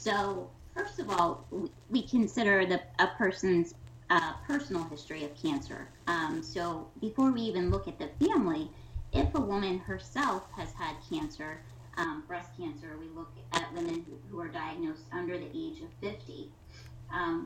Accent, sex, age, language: American, female, 30-49, English